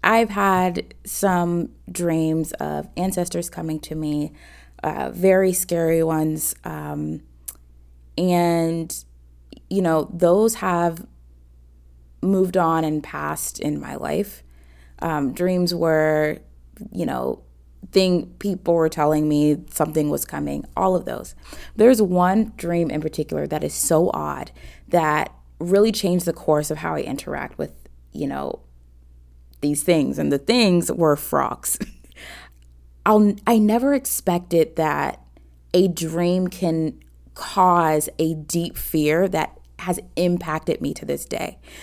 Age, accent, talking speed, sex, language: 20-39, American, 125 wpm, female, English